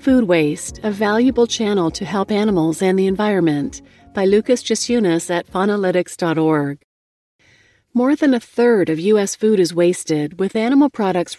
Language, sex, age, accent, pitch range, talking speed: English, female, 40-59, American, 165-220 Hz, 150 wpm